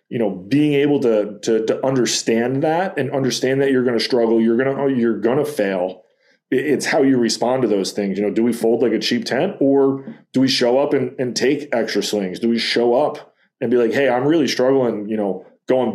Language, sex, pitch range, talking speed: English, male, 105-125 Hz, 235 wpm